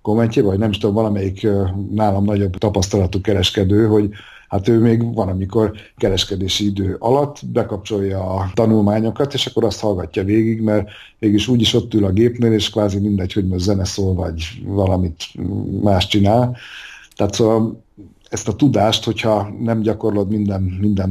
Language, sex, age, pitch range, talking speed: Hungarian, male, 50-69, 95-110 Hz, 155 wpm